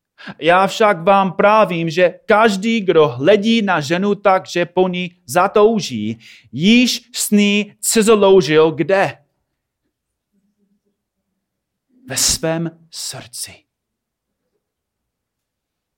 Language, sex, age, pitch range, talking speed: Czech, male, 30-49, 110-170 Hz, 85 wpm